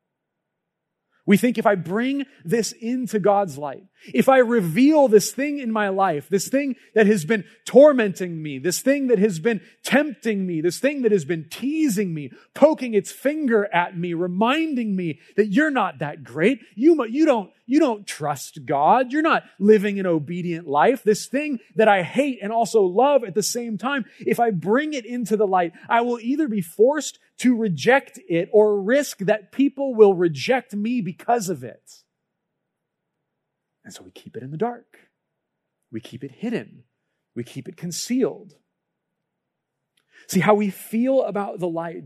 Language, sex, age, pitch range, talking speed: English, male, 30-49, 170-240 Hz, 175 wpm